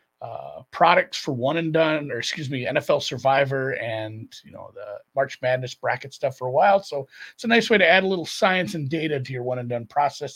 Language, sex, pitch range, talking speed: English, male, 130-165 Hz, 230 wpm